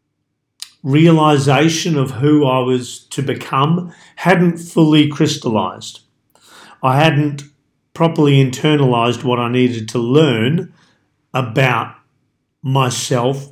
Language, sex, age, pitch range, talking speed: English, male, 40-59, 120-145 Hz, 95 wpm